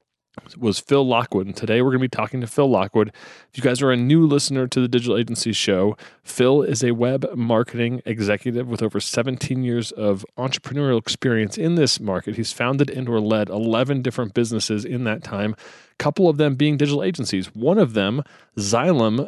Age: 30-49